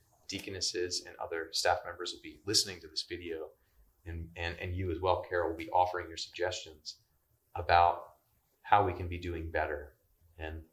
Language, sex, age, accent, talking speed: English, male, 30-49, American, 175 wpm